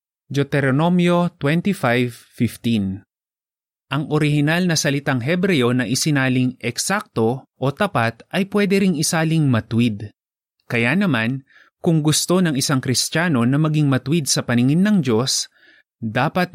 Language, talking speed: Filipino, 110 wpm